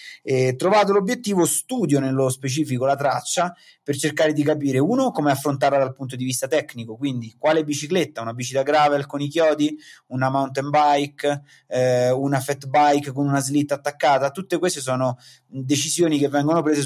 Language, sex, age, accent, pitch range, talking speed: Italian, male, 30-49, native, 125-155 Hz, 170 wpm